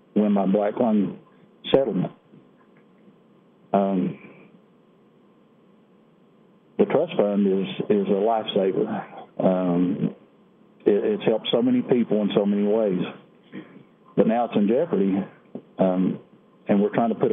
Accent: American